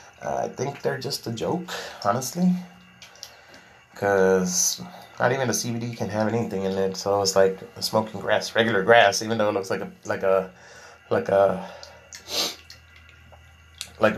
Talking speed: 150 wpm